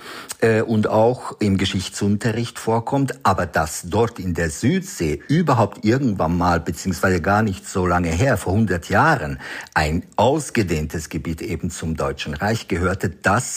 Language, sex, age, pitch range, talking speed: German, male, 50-69, 90-115 Hz, 140 wpm